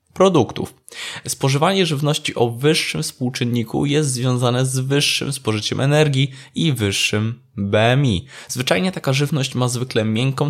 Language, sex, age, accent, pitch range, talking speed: Polish, male, 20-39, native, 120-145 Hz, 120 wpm